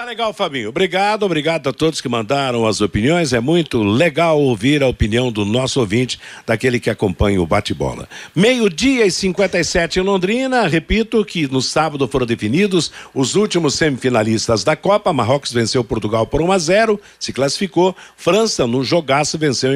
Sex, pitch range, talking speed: male, 125-170 Hz, 165 wpm